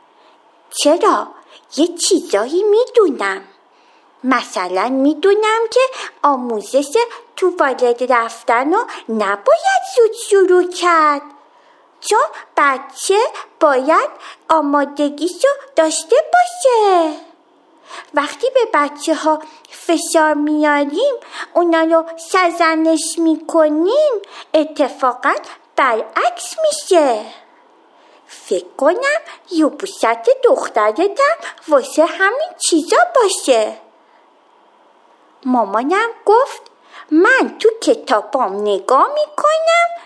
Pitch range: 285-395 Hz